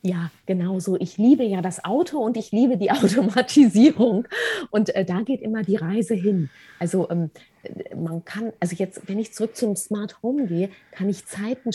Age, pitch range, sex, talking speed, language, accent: 30-49, 185-230 Hz, female, 190 wpm, German, German